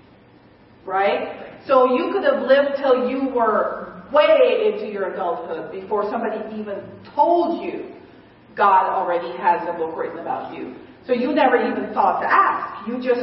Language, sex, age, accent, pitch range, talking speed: English, female, 40-59, American, 195-240 Hz, 160 wpm